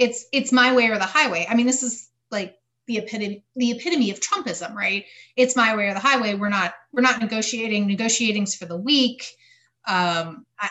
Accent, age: American, 30-49